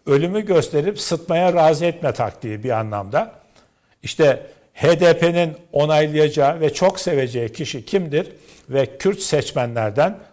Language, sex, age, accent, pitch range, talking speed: Turkish, male, 60-79, native, 140-175 Hz, 110 wpm